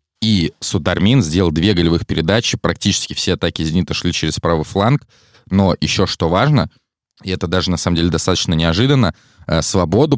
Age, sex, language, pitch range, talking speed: 20-39, male, Russian, 85-105 Hz, 160 wpm